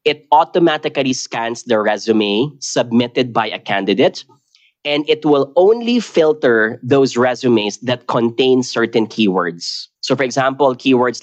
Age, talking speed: 20-39, 130 wpm